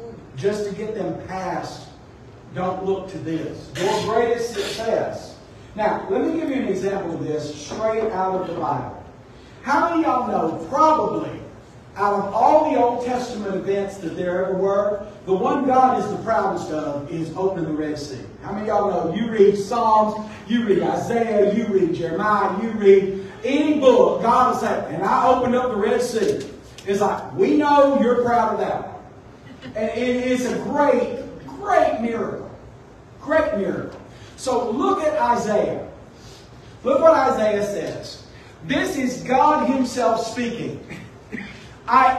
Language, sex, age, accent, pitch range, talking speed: English, male, 50-69, American, 190-270 Hz, 160 wpm